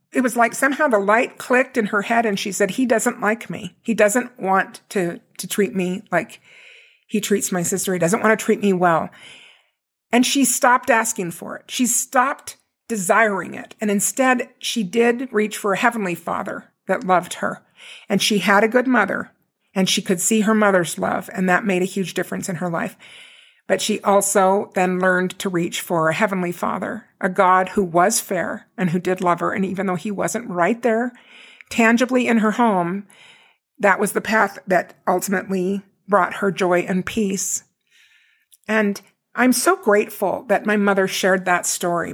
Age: 50-69